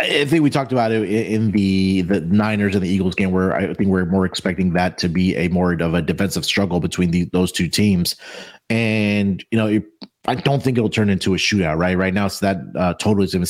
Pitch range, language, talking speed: 95-120 Hz, English, 235 wpm